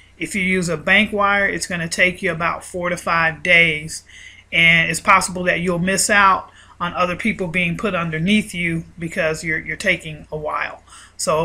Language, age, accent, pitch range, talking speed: English, 30-49, American, 170-205 Hz, 190 wpm